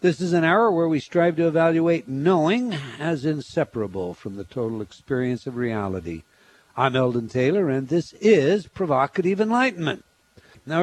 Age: 60-79